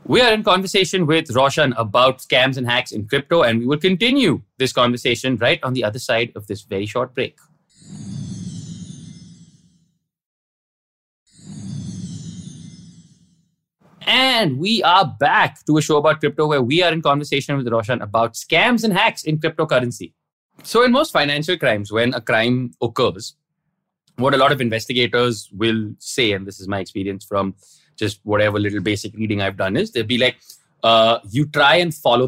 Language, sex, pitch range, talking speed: English, male, 110-160 Hz, 165 wpm